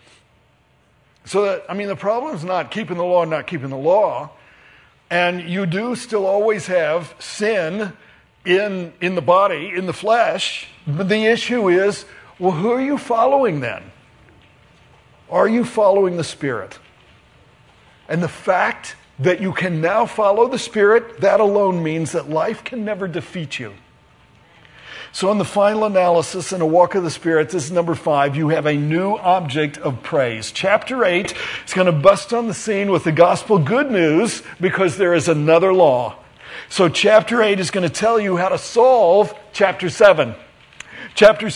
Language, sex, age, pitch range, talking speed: English, male, 50-69, 170-215 Hz, 170 wpm